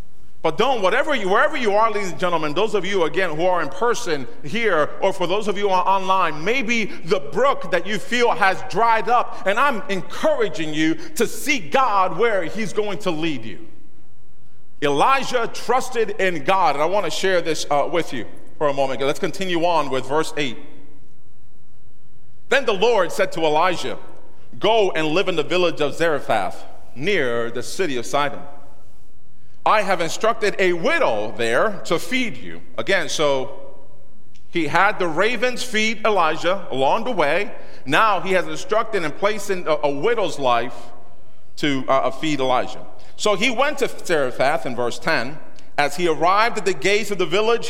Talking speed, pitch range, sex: 175 wpm, 150-215 Hz, male